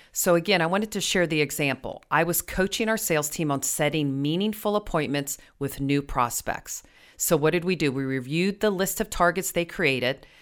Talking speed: 195 wpm